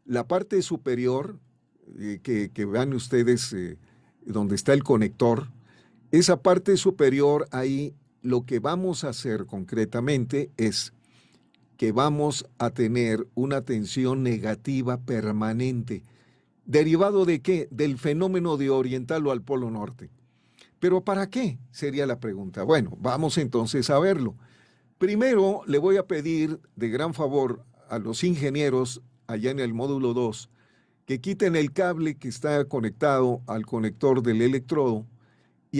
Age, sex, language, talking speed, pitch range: 50-69, male, Spanish, 135 wpm, 120-150 Hz